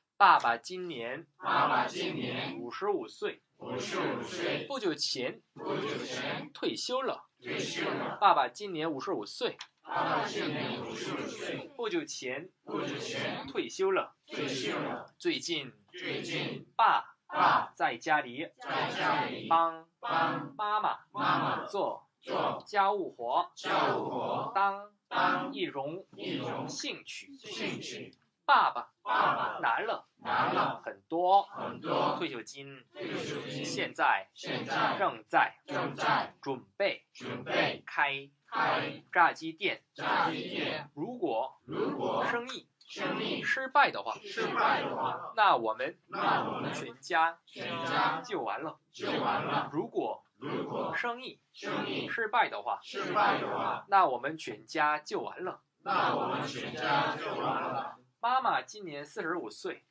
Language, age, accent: Korean, 20-39, Chinese